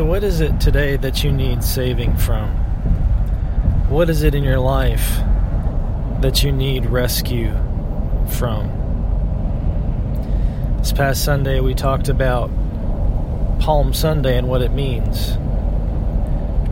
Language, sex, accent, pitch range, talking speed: English, male, American, 110-130 Hz, 120 wpm